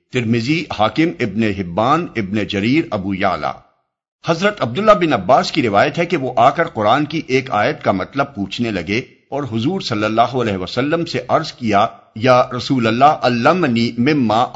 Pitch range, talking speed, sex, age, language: 105-145 Hz, 175 wpm, male, 50-69, Urdu